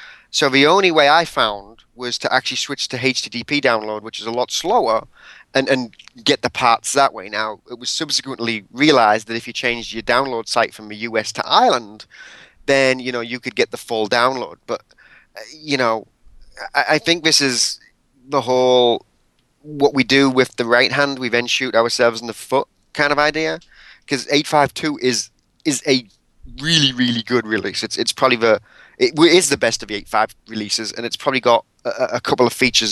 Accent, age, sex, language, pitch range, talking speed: British, 30-49, male, English, 115-140 Hz, 200 wpm